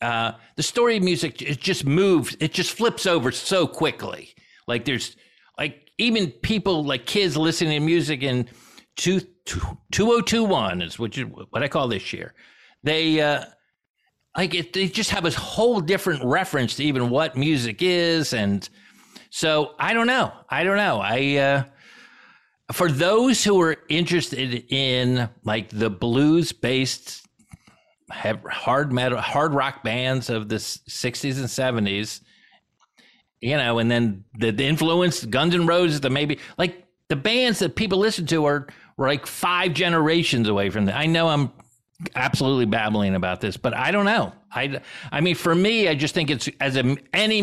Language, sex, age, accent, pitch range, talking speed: English, male, 50-69, American, 120-175 Hz, 165 wpm